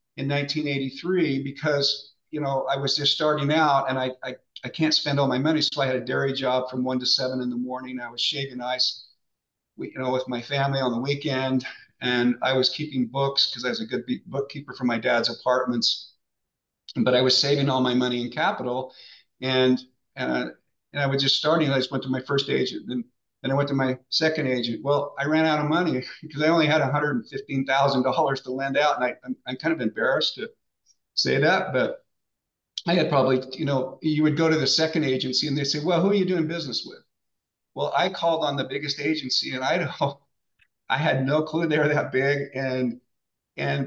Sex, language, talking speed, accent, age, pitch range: male, English, 215 wpm, American, 50-69, 130-150 Hz